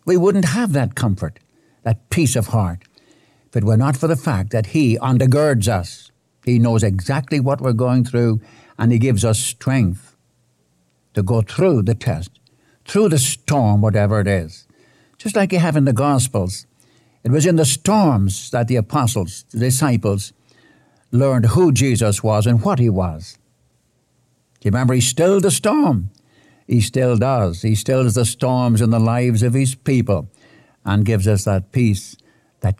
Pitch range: 110-140 Hz